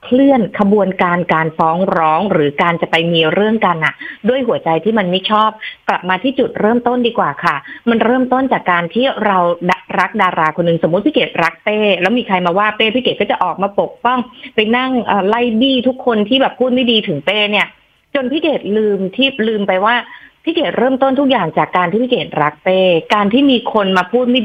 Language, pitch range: Thai, 175-240 Hz